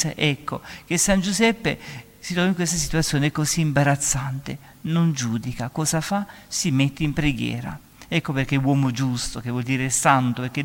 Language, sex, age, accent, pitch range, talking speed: Italian, male, 50-69, native, 135-180 Hz, 165 wpm